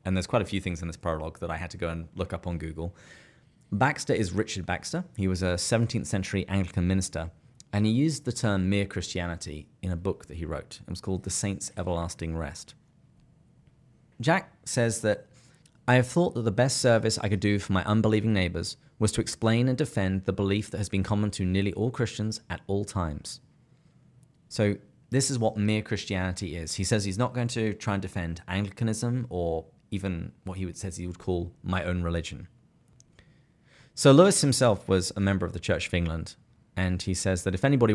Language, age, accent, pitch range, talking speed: English, 30-49, British, 90-110 Hz, 205 wpm